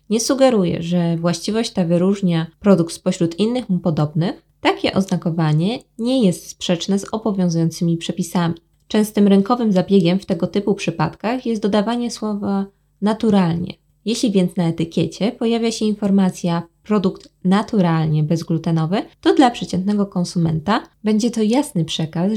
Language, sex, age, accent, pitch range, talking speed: Polish, female, 20-39, native, 175-220 Hz, 130 wpm